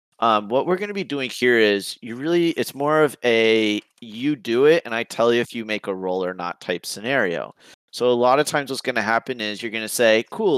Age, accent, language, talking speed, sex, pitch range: 30-49, American, English, 260 wpm, male, 105-130 Hz